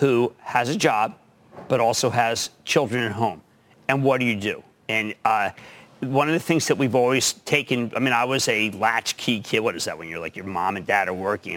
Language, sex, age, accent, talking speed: English, male, 40-59, American, 230 wpm